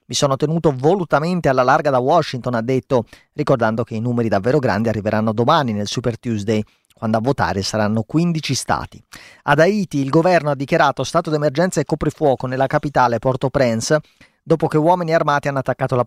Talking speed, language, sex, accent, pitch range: 175 wpm, Italian, male, native, 115-150 Hz